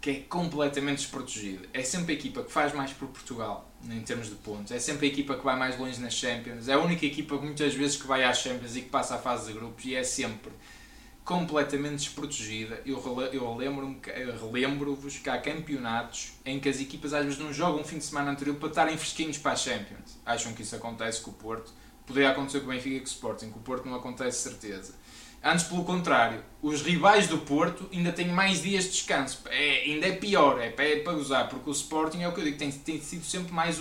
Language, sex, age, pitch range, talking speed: Portuguese, male, 20-39, 130-155 Hz, 230 wpm